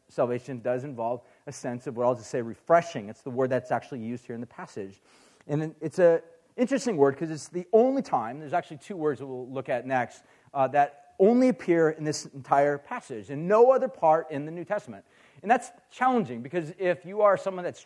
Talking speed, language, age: 220 wpm, English, 40-59